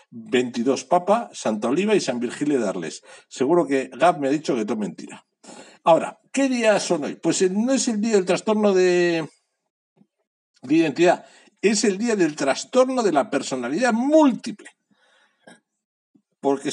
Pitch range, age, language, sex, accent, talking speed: 120-205 Hz, 60-79, Spanish, male, Spanish, 155 wpm